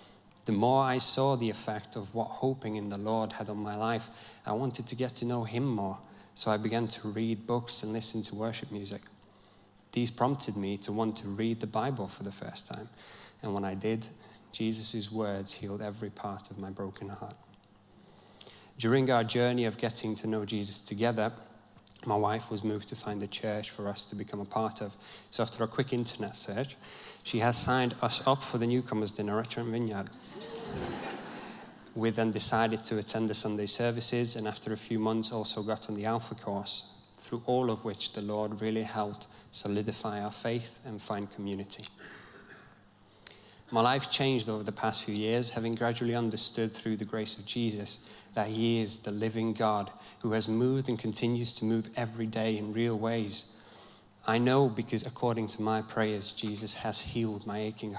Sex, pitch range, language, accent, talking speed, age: male, 105-115 Hz, English, British, 190 wpm, 20-39